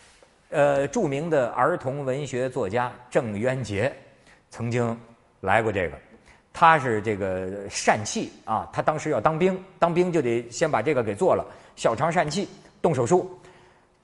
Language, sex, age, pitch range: Chinese, male, 50-69, 110-175 Hz